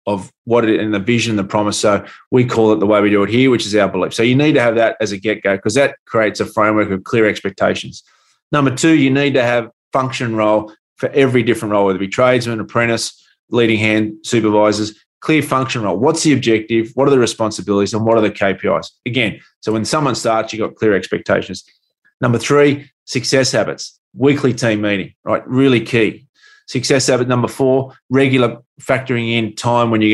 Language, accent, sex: English, Australian, male